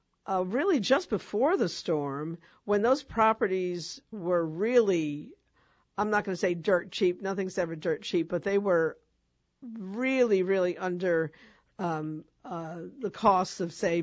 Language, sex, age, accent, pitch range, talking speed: English, female, 50-69, American, 175-225 Hz, 140 wpm